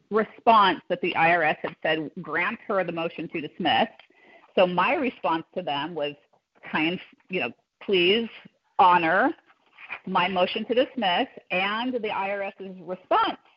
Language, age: English, 30-49